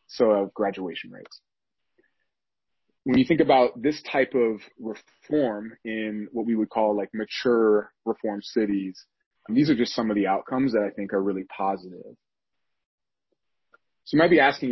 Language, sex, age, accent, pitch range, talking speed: English, male, 30-49, American, 100-125 Hz, 165 wpm